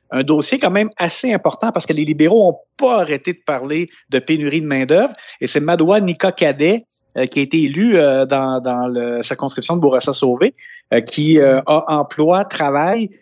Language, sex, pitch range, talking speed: French, male, 130-170 Hz, 200 wpm